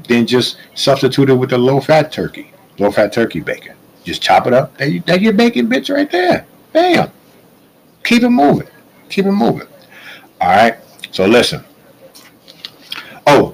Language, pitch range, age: English, 95-145 Hz, 50-69